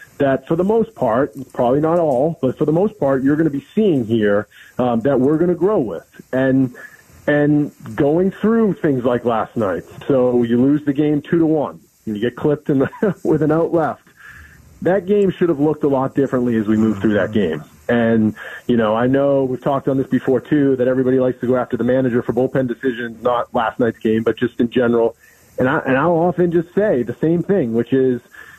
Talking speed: 225 wpm